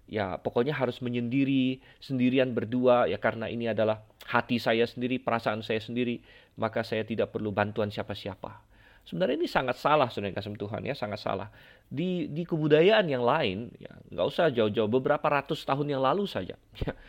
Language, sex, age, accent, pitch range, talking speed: Indonesian, male, 30-49, native, 110-155 Hz, 160 wpm